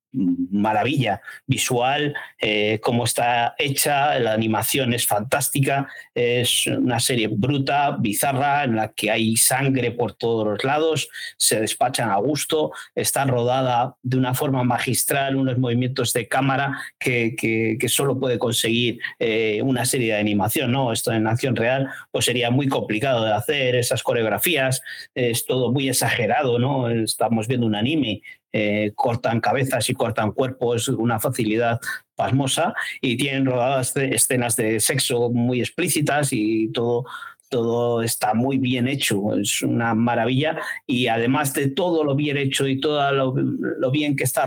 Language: Spanish